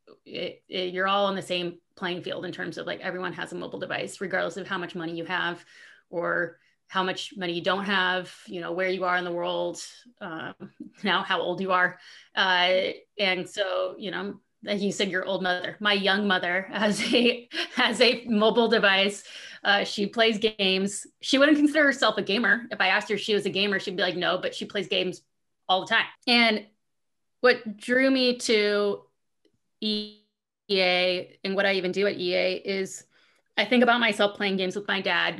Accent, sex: American, female